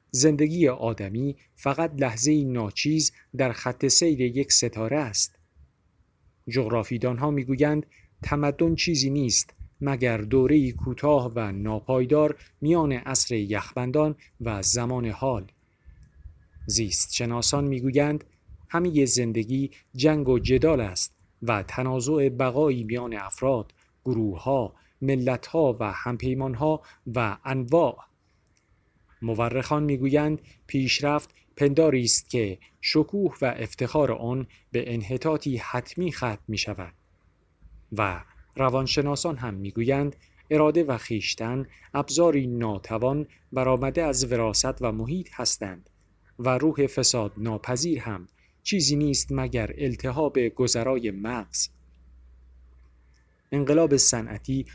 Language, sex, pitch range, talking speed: Persian, male, 105-140 Hz, 100 wpm